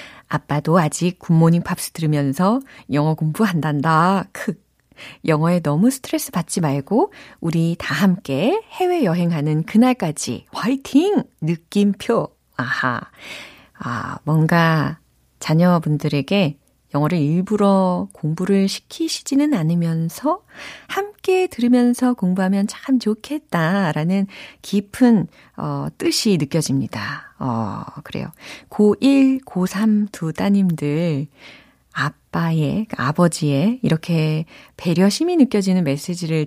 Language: Korean